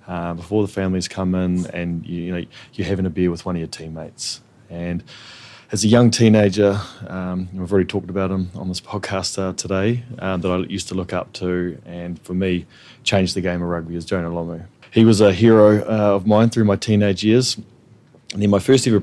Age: 20-39